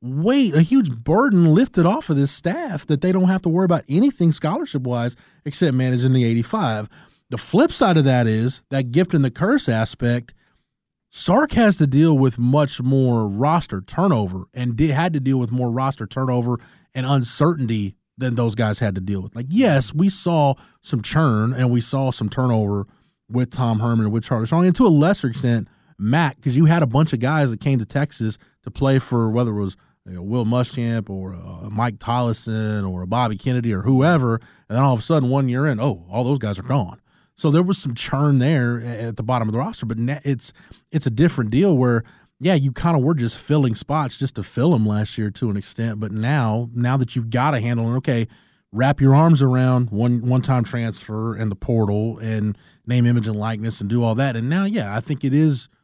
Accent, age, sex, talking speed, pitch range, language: American, 20-39, male, 215 wpm, 115-150 Hz, English